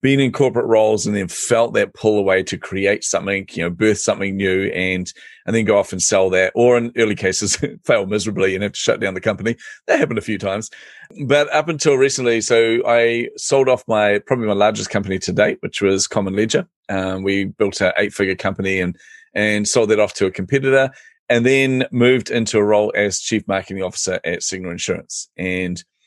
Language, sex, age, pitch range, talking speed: English, male, 30-49, 95-120 Hz, 210 wpm